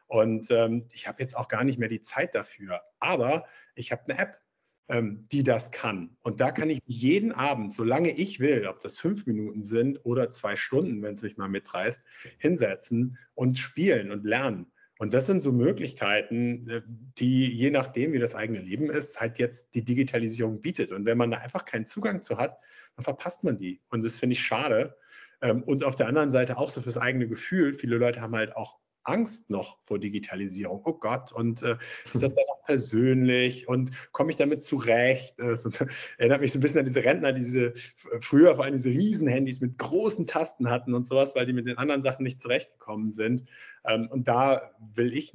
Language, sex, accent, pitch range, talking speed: German, male, German, 115-135 Hz, 205 wpm